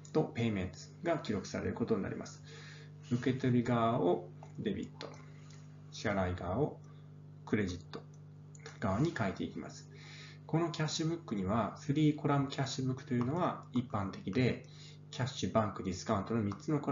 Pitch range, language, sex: 125-150 Hz, Japanese, male